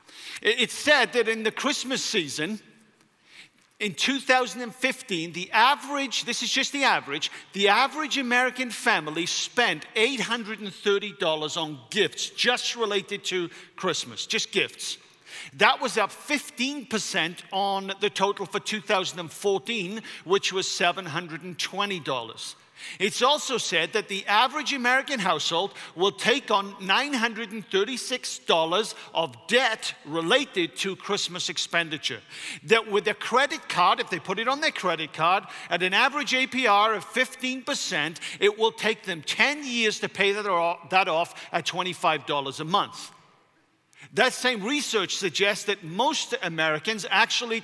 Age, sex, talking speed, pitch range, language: 50-69, male, 125 wpm, 185-245 Hz, English